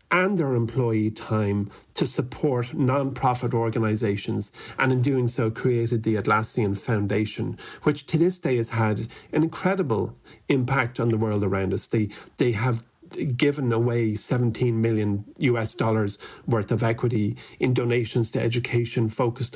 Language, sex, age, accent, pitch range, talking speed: English, male, 40-59, Irish, 110-140 Hz, 145 wpm